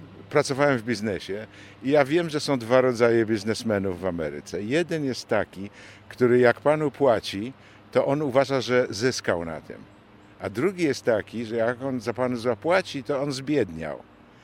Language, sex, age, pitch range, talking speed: Polish, male, 50-69, 105-135 Hz, 165 wpm